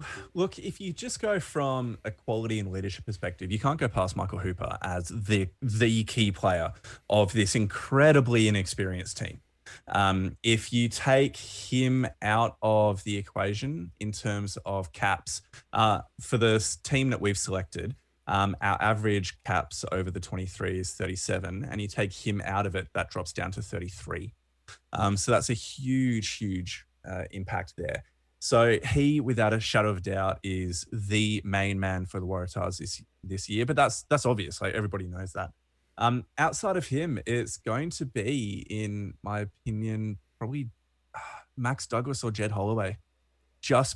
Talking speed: 165 wpm